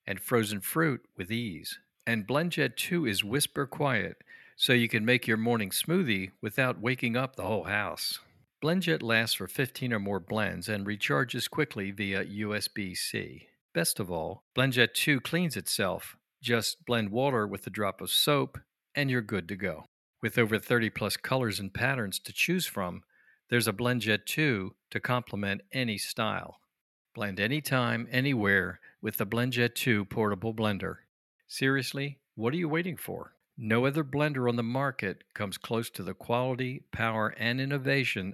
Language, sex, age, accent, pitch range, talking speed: English, male, 50-69, American, 105-130 Hz, 160 wpm